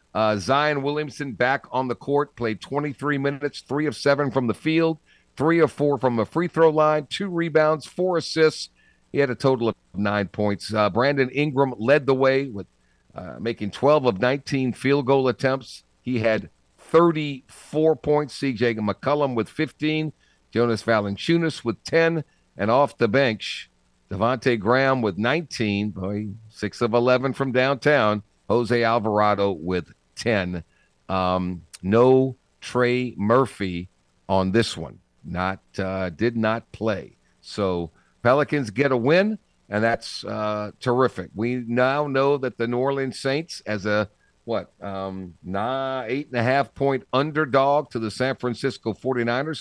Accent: American